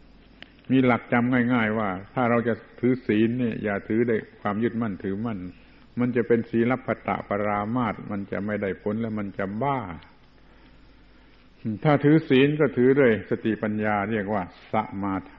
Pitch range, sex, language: 105-125 Hz, male, Thai